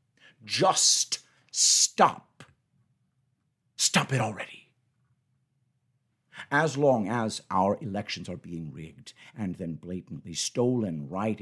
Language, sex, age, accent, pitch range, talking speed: English, male, 60-79, American, 120-145 Hz, 95 wpm